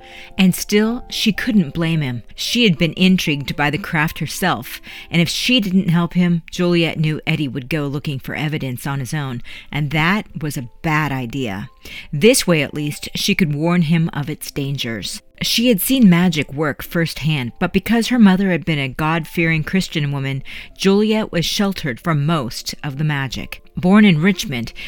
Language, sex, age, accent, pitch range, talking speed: English, female, 40-59, American, 145-180 Hz, 180 wpm